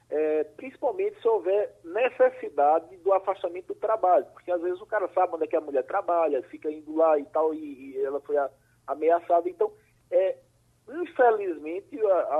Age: 50-69